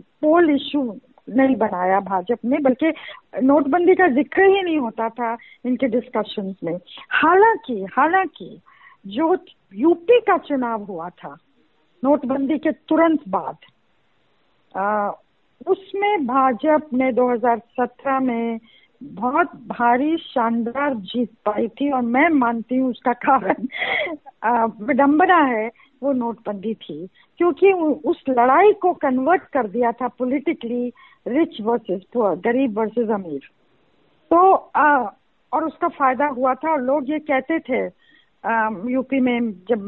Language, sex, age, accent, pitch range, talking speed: Hindi, female, 50-69, native, 230-305 Hz, 115 wpm